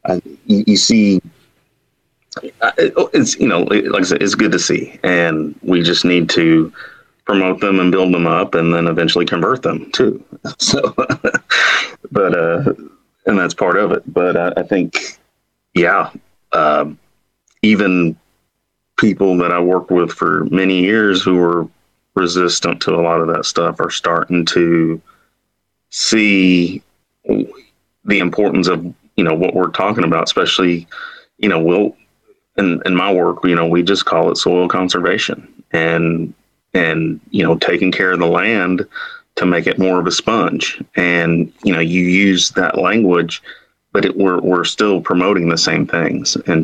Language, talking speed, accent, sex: English, 160 wpm, American, male